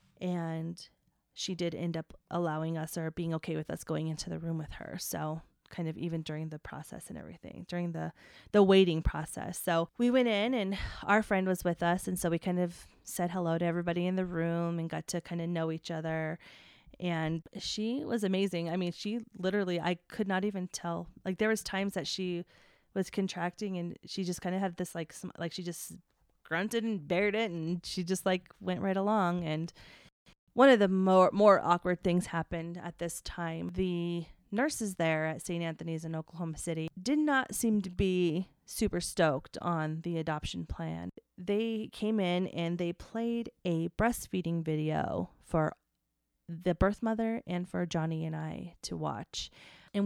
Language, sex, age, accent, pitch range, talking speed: English, female, 20-39, American, 165-195 Hz, 190 wpm